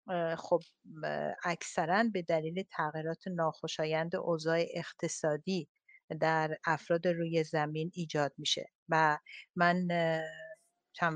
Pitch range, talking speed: 160-205 Hz, 90 wpm